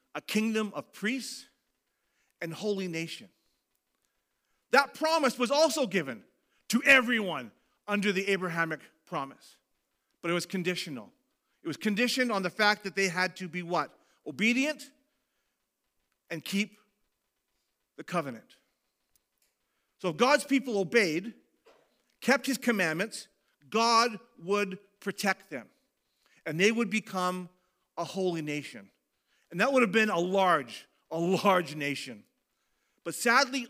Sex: male